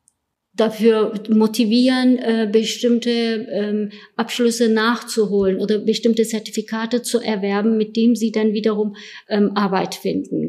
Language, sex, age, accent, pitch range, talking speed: German, female, 50-69, German, 200-230 Hz, 115 wpm